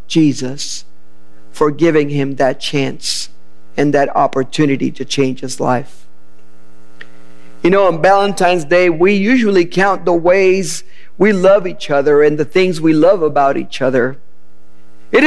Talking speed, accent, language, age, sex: 140 wpm, American, English, 50-69, male